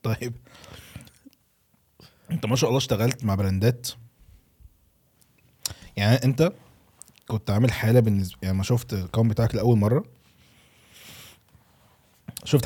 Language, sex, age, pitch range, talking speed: Arabic, male, 20-39, 100-125 Hz, 105 wpm